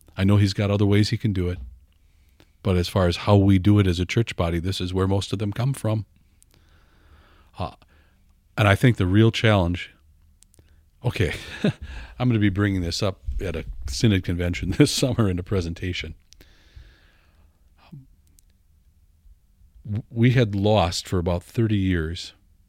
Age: 50-69